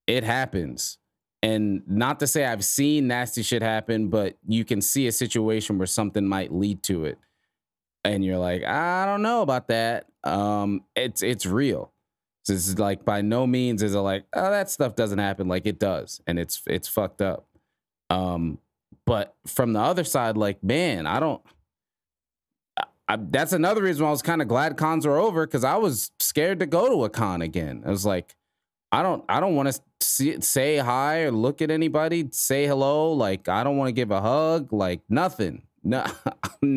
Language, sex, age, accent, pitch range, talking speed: English, male, 20-39, American, 105-155 Hz, 195 wpm